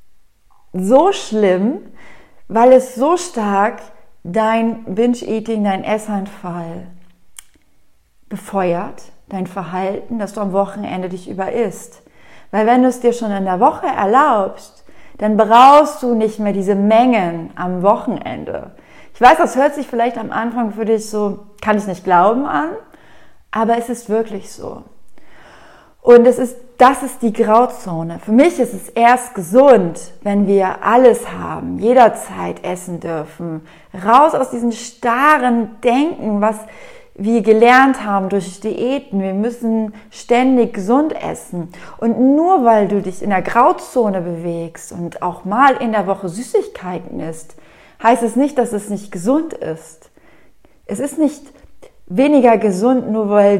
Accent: German